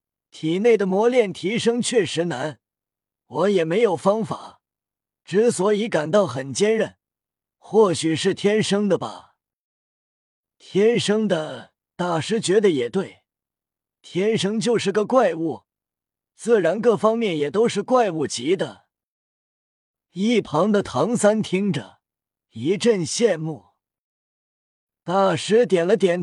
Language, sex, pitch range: Chinese, male, 155-220 Hz